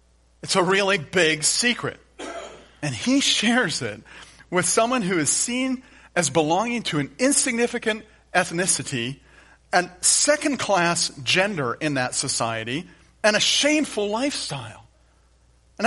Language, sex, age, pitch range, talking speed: English, male, 40-59, 115-185 Hz, 120 wpm